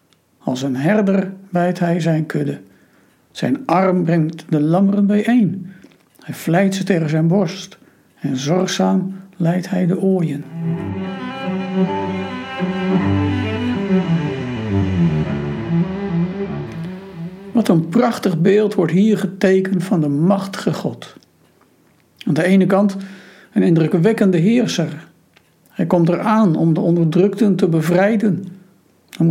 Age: 60-79